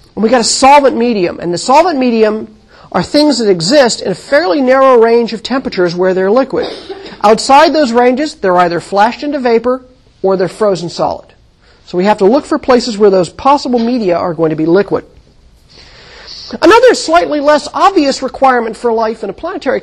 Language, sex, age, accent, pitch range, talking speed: English, male, 40-59, American, 205-295 Hz, 190 wpm